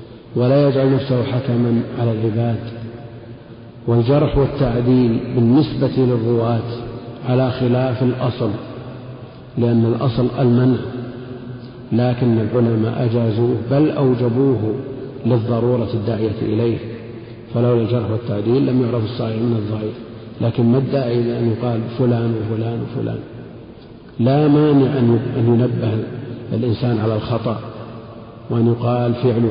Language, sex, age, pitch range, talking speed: Arabic, male, 50-69, 115-130 Hz, 100 wpm